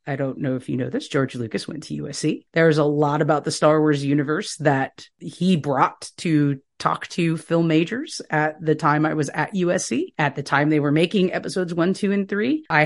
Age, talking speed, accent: 30-49, 220 wpm, American